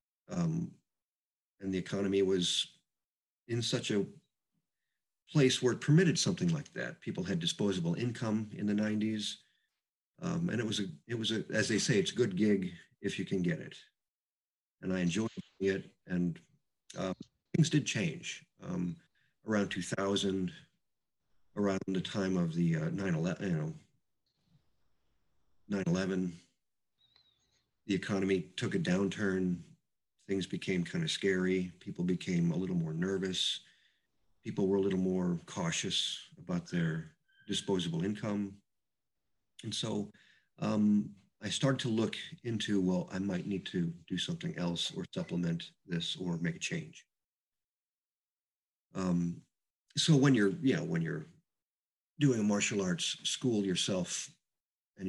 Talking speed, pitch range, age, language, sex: 140 wpm, 95-155 Hz, 50-69, English, male